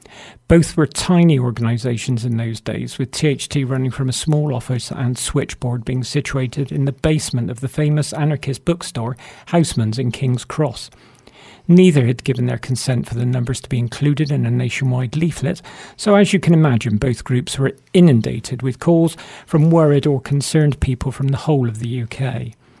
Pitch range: 125-150 Hz